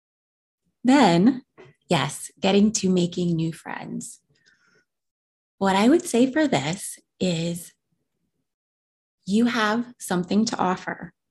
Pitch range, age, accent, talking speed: 185-240 Hz, 20-39, American, 100 wpm